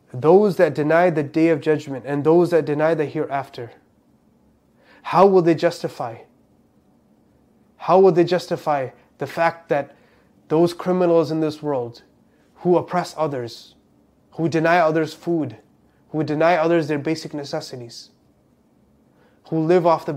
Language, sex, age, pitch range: English, male, 20-39, 145-165 Hz